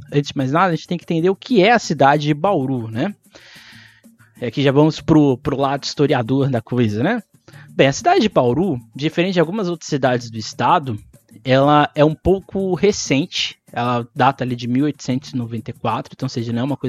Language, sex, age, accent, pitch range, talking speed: Portuguese, male, 20-39, Brazilian, 120-155 Hz, 175 wpm